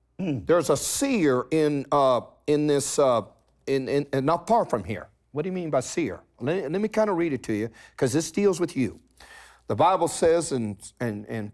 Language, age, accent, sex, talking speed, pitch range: English, 50-69, American, male, 215 wpm, 130-190 Hz